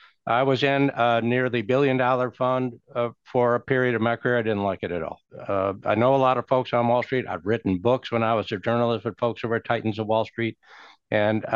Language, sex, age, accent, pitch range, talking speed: English, male, 60-79, American, 110-130 Hz, 250 wpm